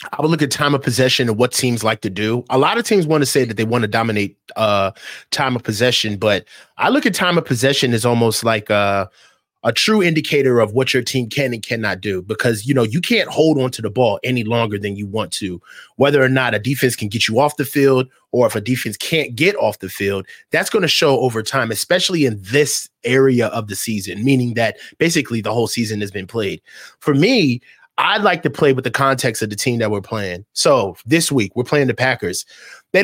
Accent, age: American, 30-49